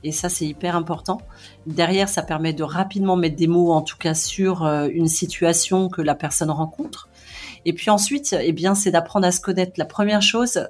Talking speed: 200 wpm